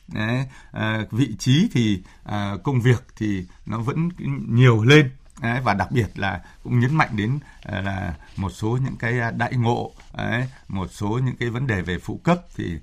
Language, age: Vietnamese, 60-79